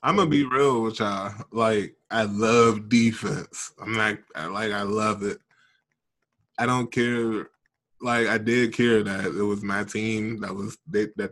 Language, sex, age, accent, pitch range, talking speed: English, male, 20-39, American, 105-115 Hz, 175 wpm